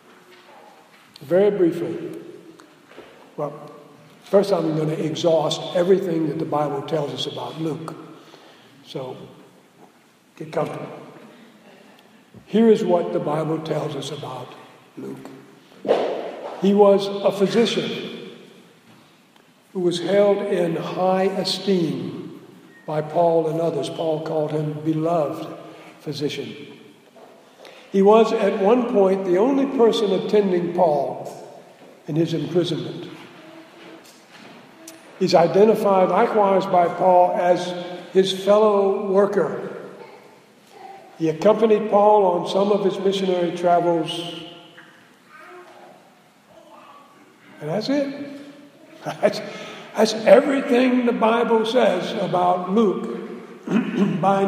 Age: 60-79